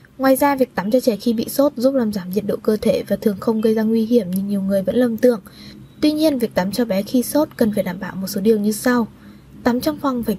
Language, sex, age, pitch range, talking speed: Vietnamese, female, 10-29, 215-265 Hz, 290 wpm